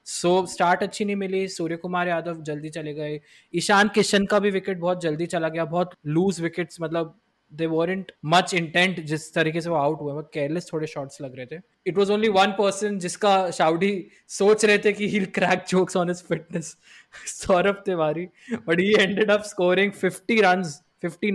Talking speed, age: 160 wpm, 20-39